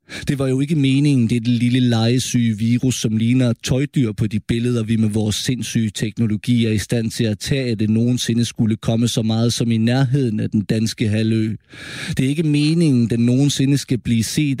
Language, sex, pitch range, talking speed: Danish, male, 120-180 Hz, 200 wpm